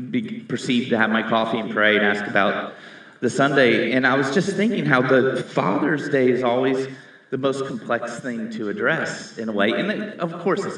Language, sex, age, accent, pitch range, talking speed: English, male, 30-49, American, 115-145 Hz, 205 wpm